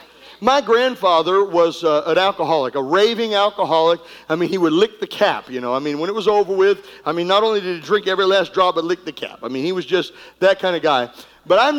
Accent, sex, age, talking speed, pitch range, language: American, male, 50-69, 255 wpm, 200-280 Hz, English